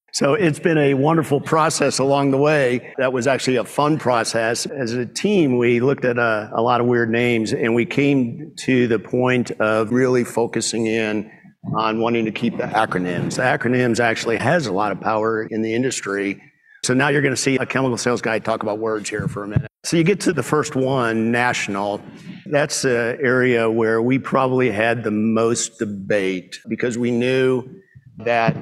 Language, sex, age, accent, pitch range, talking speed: English, male, 50-69, American, 110-130 Hz, 195 wpm